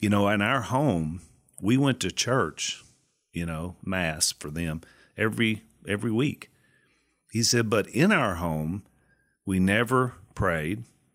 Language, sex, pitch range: English, male, 85-105 Hz